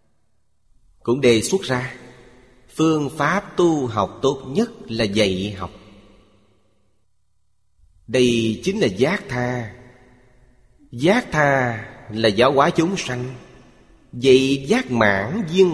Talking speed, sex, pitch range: 110 wpm, male, 105-145 Hz